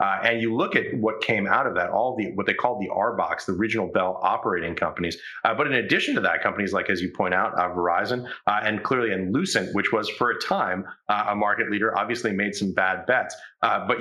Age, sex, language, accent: 30-49, male, English, American